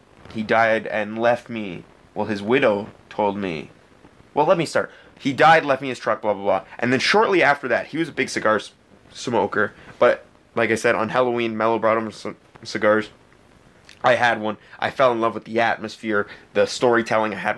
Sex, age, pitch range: male, 20-39, 110-130 Hz